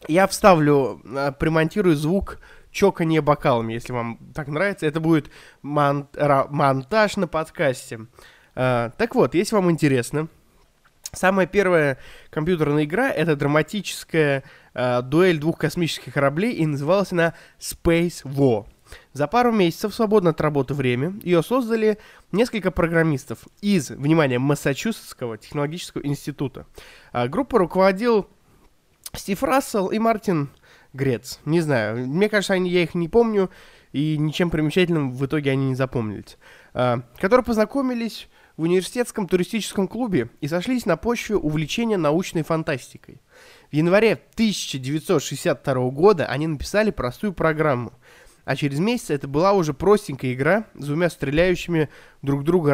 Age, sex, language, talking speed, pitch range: 20-39, male, Russian, 125 wpm, 140-195 Hz